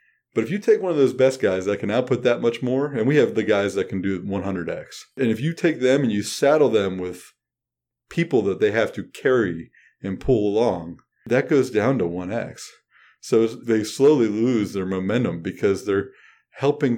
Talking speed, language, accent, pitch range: 205 wpm, English, American, 100-135 Hz